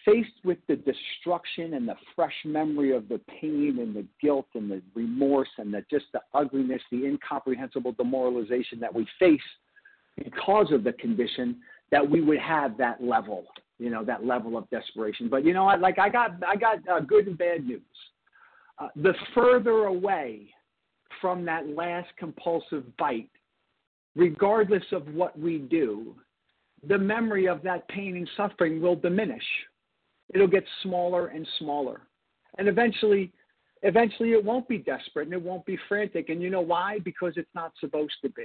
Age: 50-69